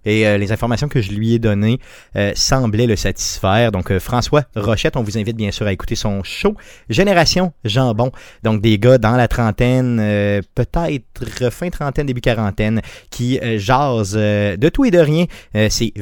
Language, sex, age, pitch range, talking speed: French, male, 30-49, 105-135 Hz, 190 wpm